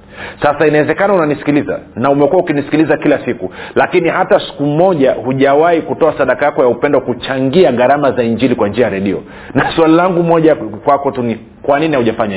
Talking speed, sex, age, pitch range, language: 175 wpm, male, 40-59, 125-155 Hz, Swahili